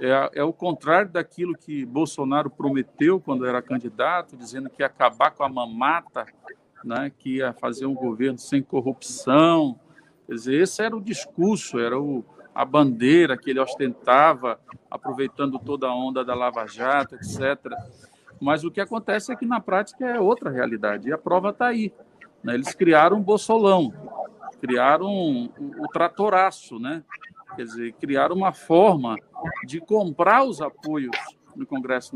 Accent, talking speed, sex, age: Brazilian, 160 wpm, male, 50-69